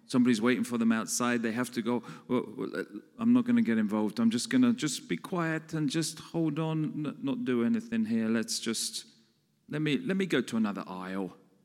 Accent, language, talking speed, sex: British, English, 210 wpm, male